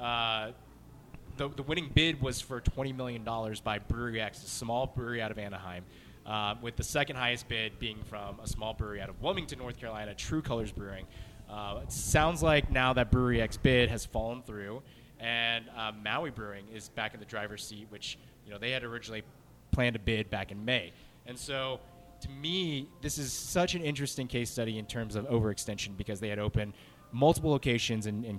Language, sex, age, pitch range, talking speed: English, male, 20-39, 110-130 Hz, 200 wpm